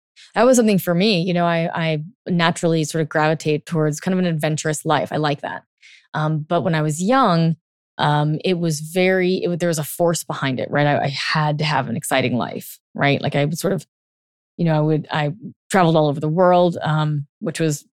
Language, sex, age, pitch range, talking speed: English, female, 20-39, 150-175 Hz, 220 wpm